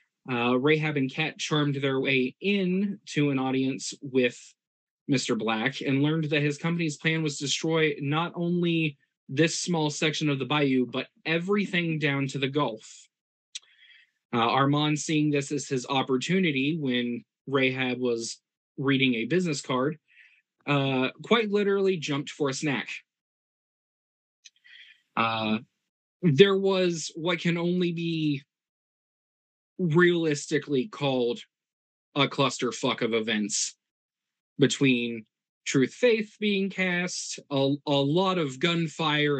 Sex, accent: male, American